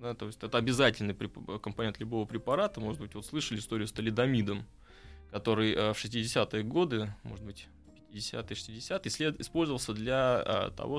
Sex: male